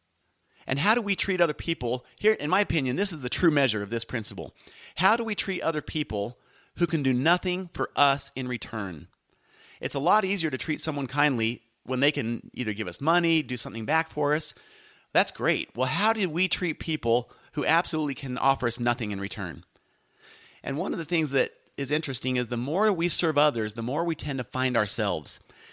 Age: 30-49